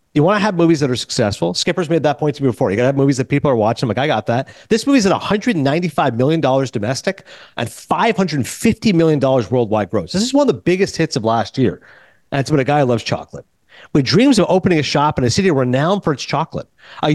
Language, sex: English, male